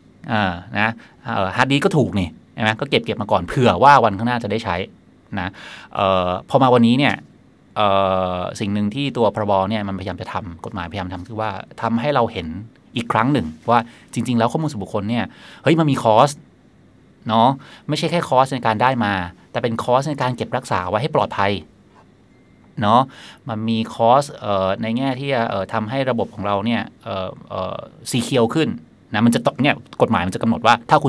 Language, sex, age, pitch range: Thai, male, 20-39, 100-125 Hz